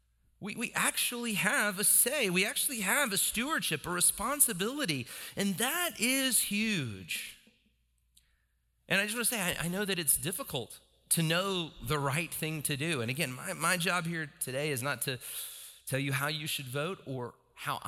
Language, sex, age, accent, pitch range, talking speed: English, male, 30-49, American, 125-185 Hz, 180 wpm